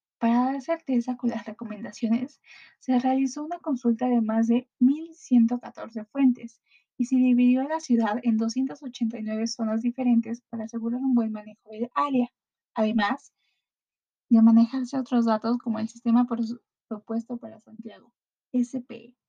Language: Spanish